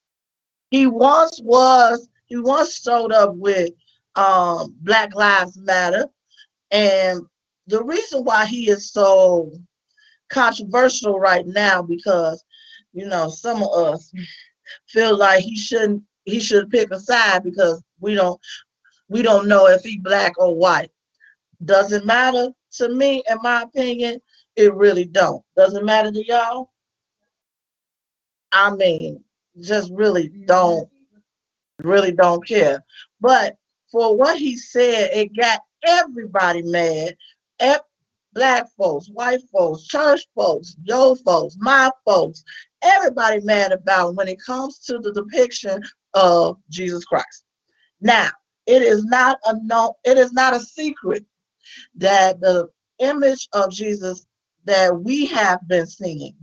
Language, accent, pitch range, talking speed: English, American, 185-255 Hz, 130 wpm